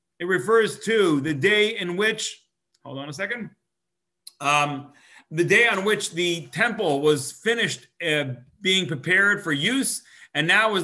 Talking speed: 155 wpm